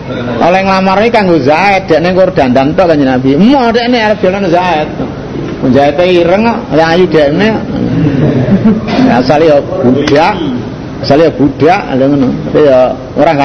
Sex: male